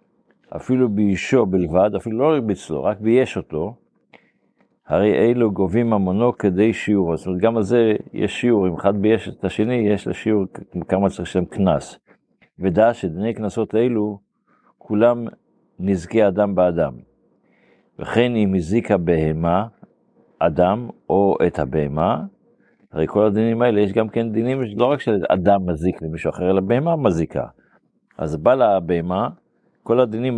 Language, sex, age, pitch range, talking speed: Hebrew, male, 50-69, 90-115 Hz, 145 wpm